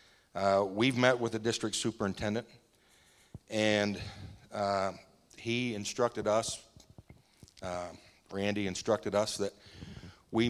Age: 50-69